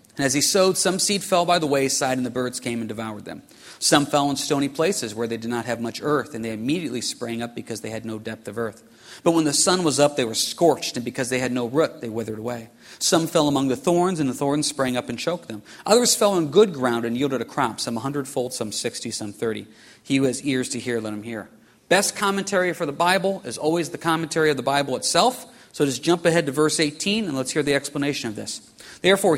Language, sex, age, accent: English, male, 40-59, American